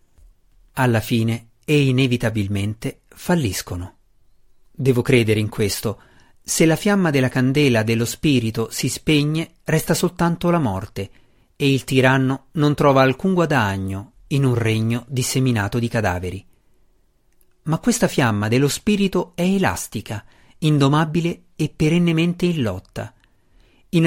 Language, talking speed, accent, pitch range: Italian, 120 wpm, native, 110-150 Hz